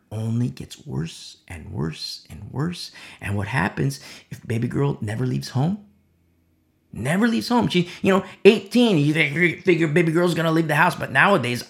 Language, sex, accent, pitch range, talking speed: English, male, American, 120-175 Hz, 180 wpm